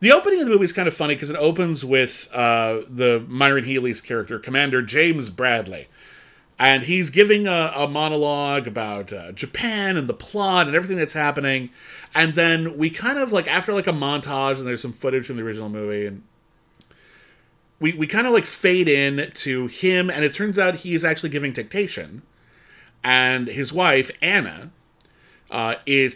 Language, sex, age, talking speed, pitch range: English, male, 30-49, 185 wpm, 130-175 Hz